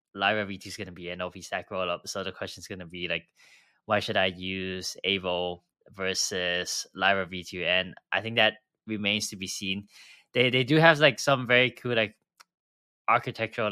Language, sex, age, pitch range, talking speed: English, male, 20-39, 100-120 Hz, 195 wpm